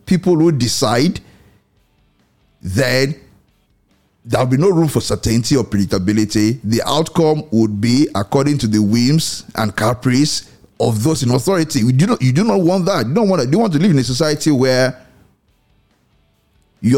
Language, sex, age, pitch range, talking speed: English, male, 50-69, 110-145 Hz, 170 wpm